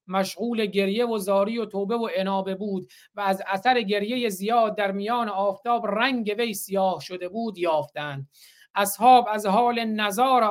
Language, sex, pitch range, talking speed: Persian, male, 190-235 Hz, 155 wpm